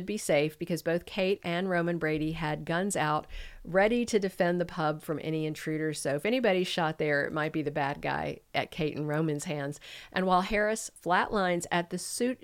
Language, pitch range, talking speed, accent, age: English, 155-200 Hz, 205 wpm, American, 50-69